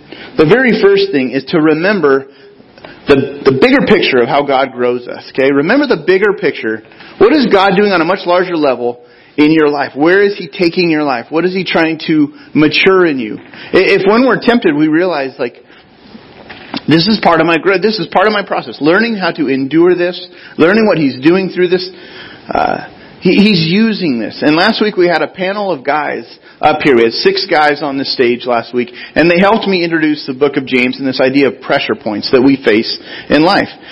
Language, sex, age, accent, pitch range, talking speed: English, male, 30-49, American, 140-200 Hz, 215 wpm